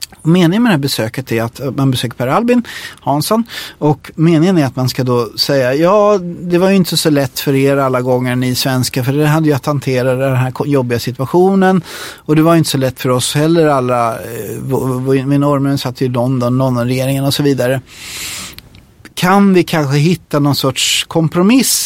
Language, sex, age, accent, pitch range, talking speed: English, male, 30-49, Swedish, 130-175 Hz, 200 wpm